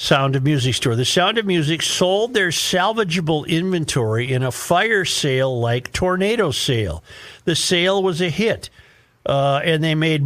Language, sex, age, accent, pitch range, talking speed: English, male, 50-69, American, 130-165 Hz, 165 wpm